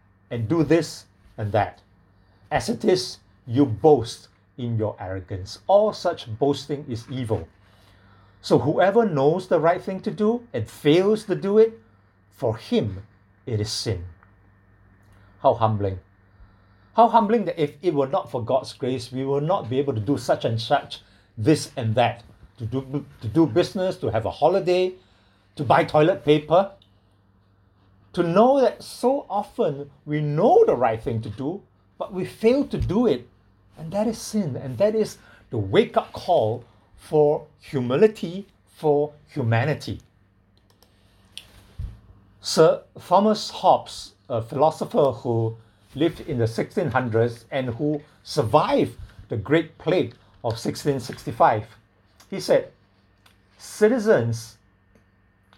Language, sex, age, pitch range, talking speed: English, male, 50-69, 100-155 Hz, 135 wpm